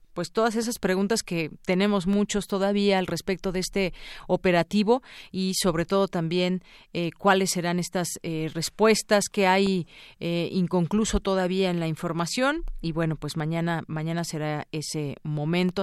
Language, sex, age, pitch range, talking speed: Spanish, female, 40-59, 165-195 Hz, 150 wpm